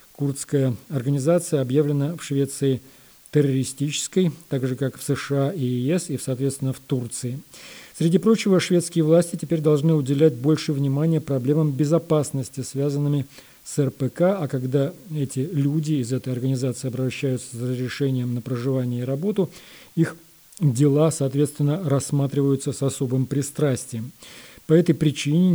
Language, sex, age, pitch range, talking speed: Russian, male, 40-59, 135-160 Hz, 130 wpm